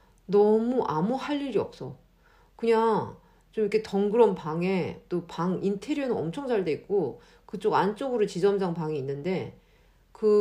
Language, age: Korean, 50-69